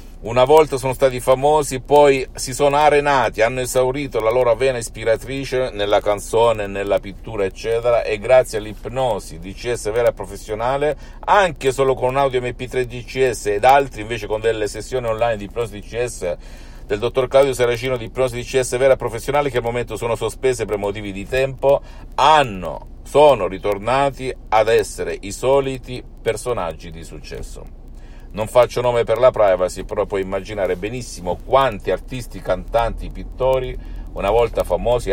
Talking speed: 155 wpm